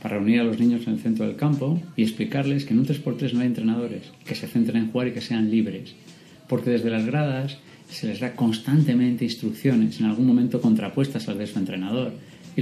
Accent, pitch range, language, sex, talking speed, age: Spanish, 115-165 Hz, Spanish, male, 220 wpm, 30-49